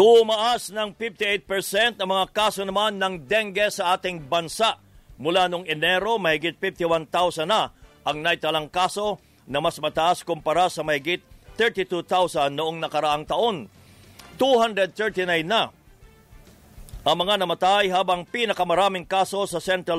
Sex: male